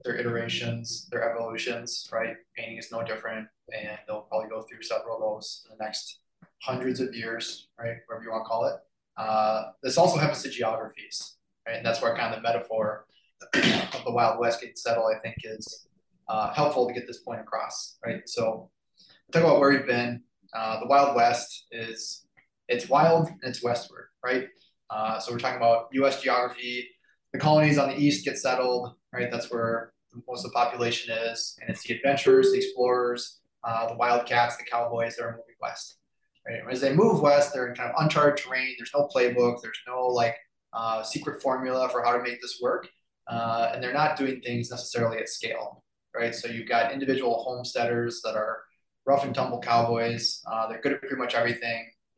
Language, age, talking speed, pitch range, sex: English, 20-39, 195 wpm, 115-130 Hz, male